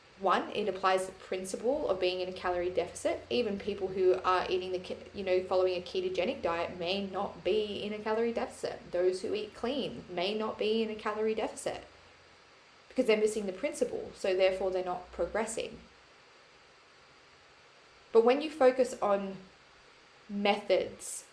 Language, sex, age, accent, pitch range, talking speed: English, female, 20-39, Australian, 185-225 Hz, 160 wpm